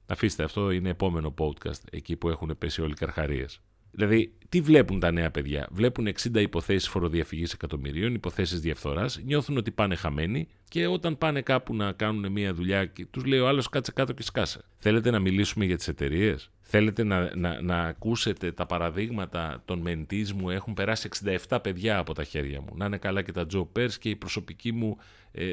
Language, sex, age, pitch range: Greek, male, 40-59, 85-105 Hz